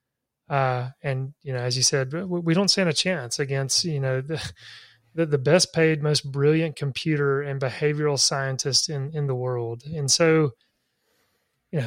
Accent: American